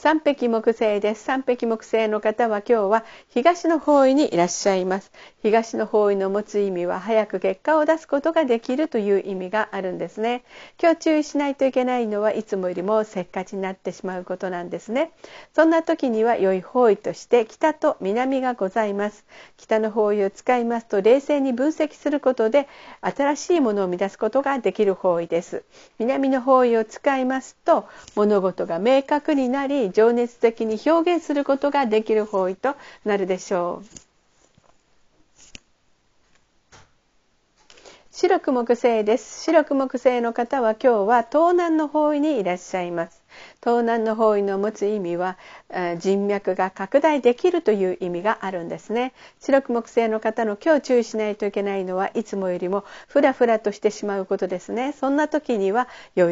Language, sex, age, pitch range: Japanese, female, 50-69, 200-275 Hz